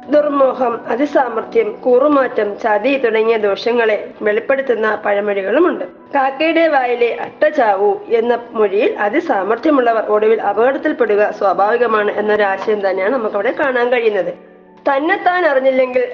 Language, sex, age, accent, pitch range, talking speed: Malayalam, female, 20-39, native, 215-290 Hz, 95 wpm